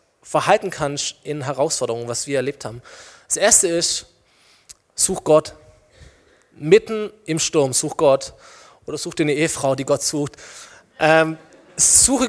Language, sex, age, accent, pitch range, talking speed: German, male, 20-39, German, 145-180 Hz, 135 wpm